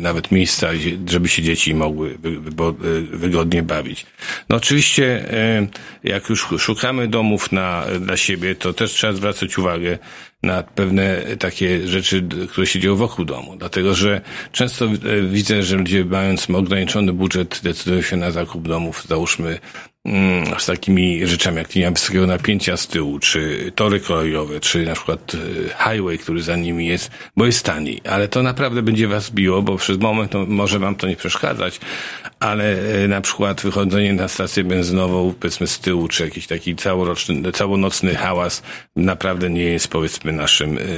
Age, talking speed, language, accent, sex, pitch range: 50-69, 150 wpm, Polish, native, male, 85-100 Hz